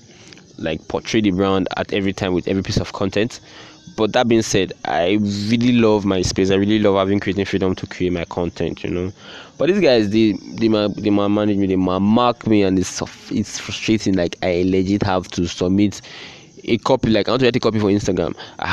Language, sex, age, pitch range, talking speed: English, male, 20-39, 95-110 Hz, 210 wpm